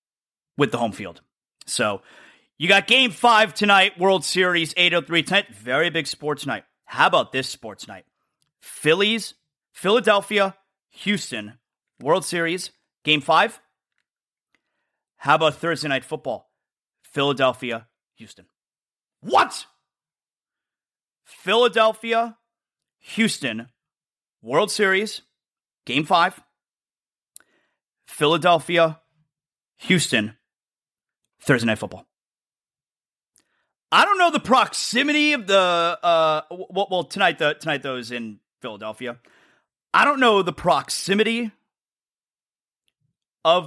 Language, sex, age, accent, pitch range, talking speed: English, male, 30-49, American, 140-200 Hz, 100 wpm